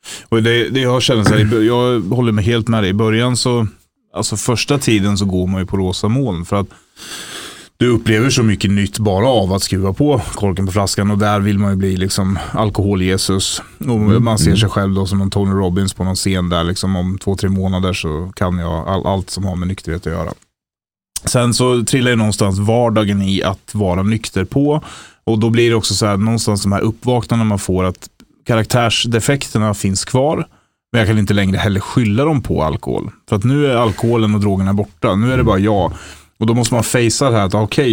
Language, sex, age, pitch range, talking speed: Swedish, male, 30-49, 95-115 Hz, 220 wpm